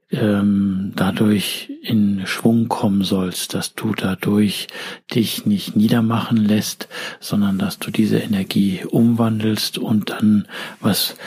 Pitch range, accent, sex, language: 105-120 Hz, German, male, German